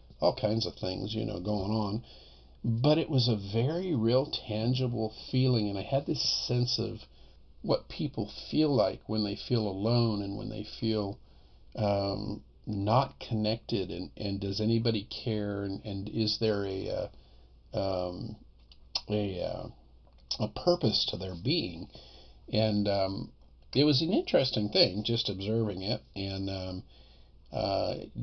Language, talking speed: English, 140 wpm